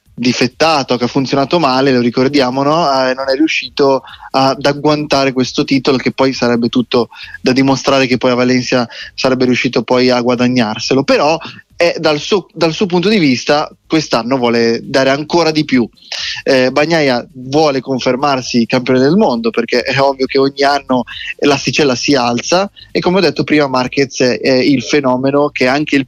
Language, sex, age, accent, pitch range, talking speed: Italian, male, 20-39, native, 125-150 Hz, 170 wpm